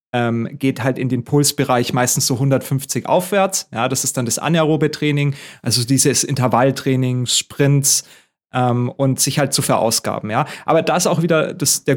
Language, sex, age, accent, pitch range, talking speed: German, male, 30-49, German, 130-145 Hz, 170 wpm